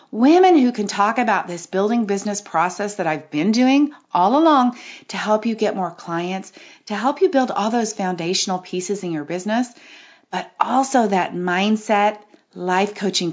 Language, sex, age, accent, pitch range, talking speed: English, female, 40-59, American, 185-255 Hz, 170 wpm